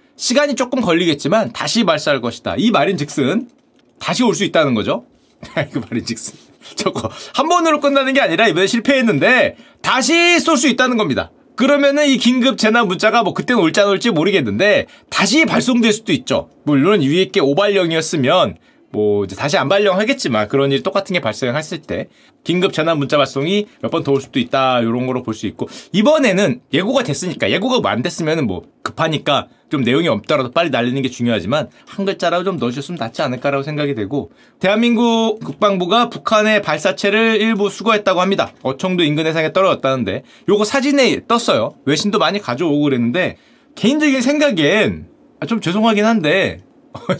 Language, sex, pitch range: Korean, male, 150-245 Hz